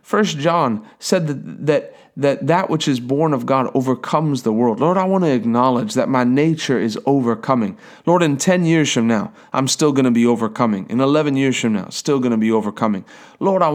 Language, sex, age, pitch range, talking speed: English, male, 30-49, 120-155 Hz, 215 wpm